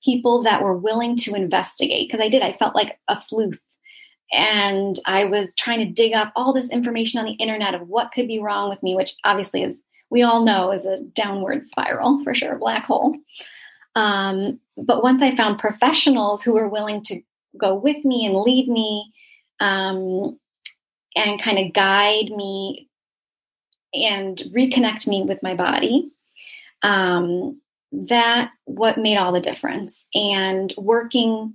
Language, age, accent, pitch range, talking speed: English, 20-39, American, 200-260 Hz, 165 wpm